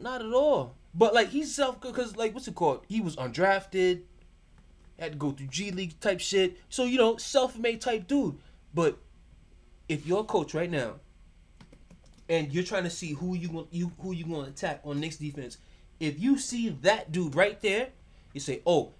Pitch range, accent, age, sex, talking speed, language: 125-210 Hz, American, 20-39, male, 200 wpm, English